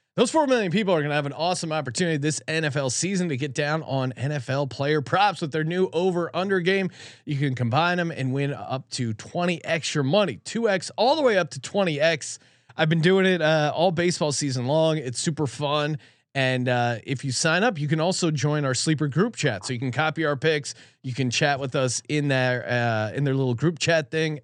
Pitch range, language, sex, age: 135-180 Hz, English, male, 30-49